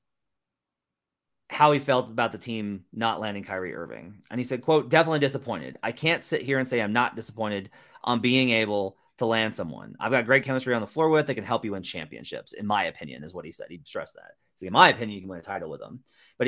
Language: English